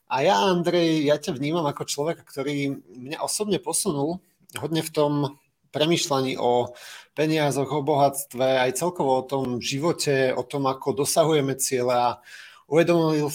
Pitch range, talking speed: 135-160 Hz, 145 wpm